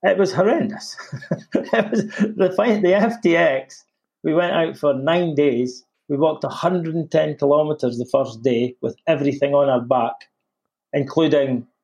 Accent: British